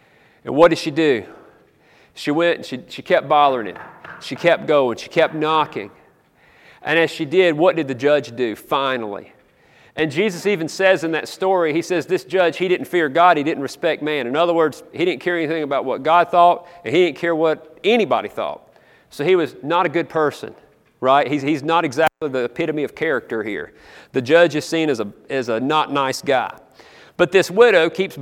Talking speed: 205 wpm